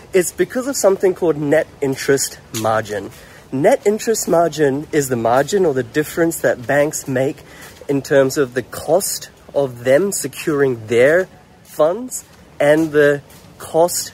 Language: English